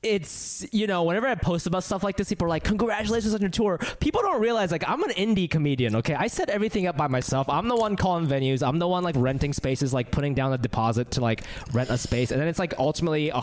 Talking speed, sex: 265 wpm, male